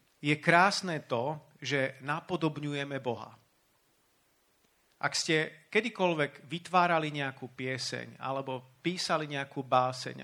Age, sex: 40-59, male